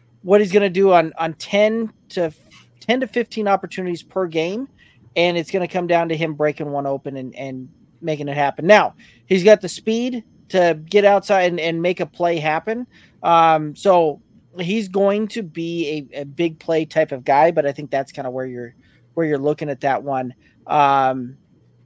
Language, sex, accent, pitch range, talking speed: English, male, American, 145-180 Hz, 200 wpm